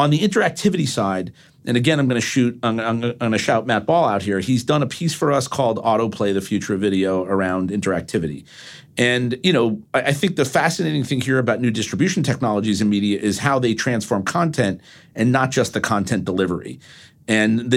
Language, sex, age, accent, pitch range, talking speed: English, male, 50-69, American, 115-155 Hz, 205 wpm